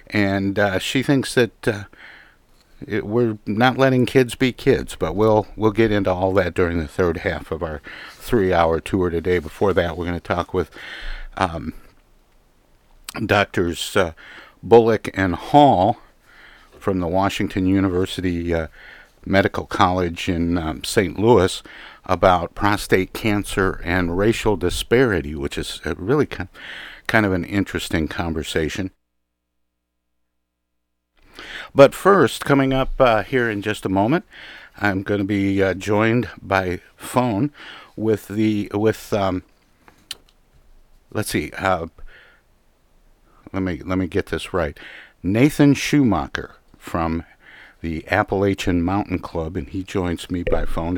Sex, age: male, 50-69